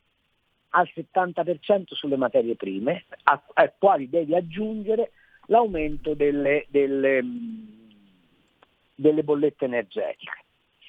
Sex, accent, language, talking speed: male, native, Italian, 85 wpm